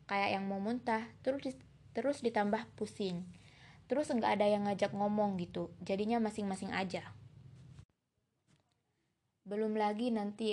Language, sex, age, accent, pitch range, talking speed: Indonesian, female, 20-39, native, 195-225 Hz, 125 wpm